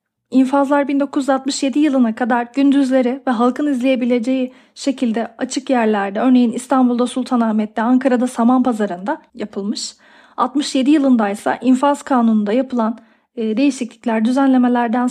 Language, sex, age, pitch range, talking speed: Turkish, female, 40-59, 230-280 Hz, 100 wpm